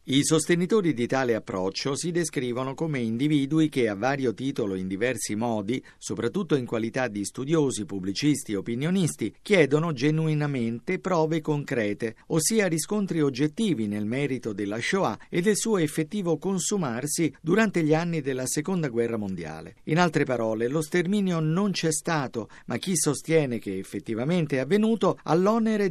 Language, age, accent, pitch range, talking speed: Italian, 50-69, native, 120-175 Hz, 150 wpm